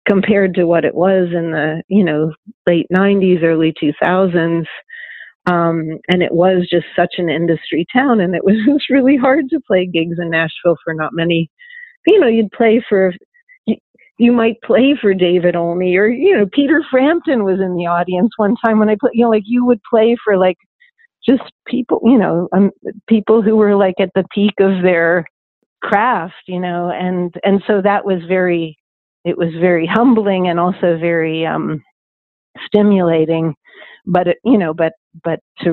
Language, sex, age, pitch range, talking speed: English, female, 40-59, 170-220 Hz, 180 wpm